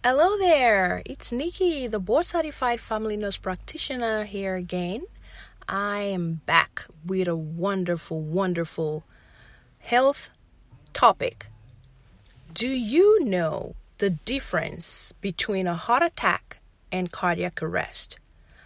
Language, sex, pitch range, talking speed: English, female, 170-245 Hz, 105 wpm